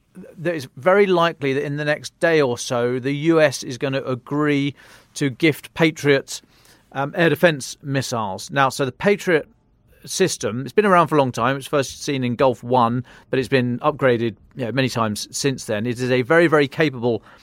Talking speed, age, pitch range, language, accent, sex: 200 wpm, 40-59, 125-150 Hz, English, British, male